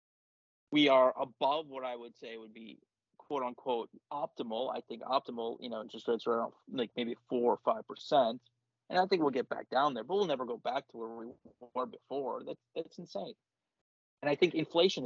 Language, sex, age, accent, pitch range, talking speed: English, male, 30-49, American, 125-175 Hz, 205 wpm